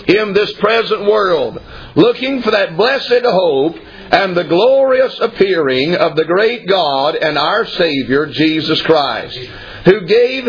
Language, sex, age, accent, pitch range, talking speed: English, male, 50-69, American, 155-220 Hz, 135 wpm